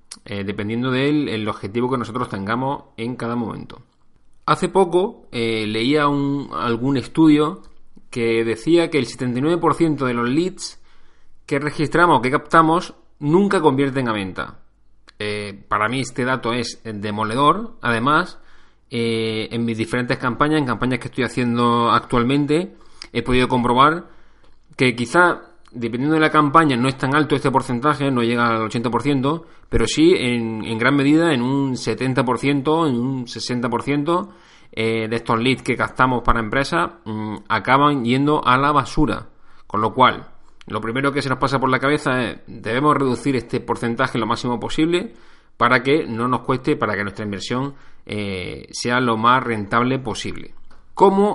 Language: Spanish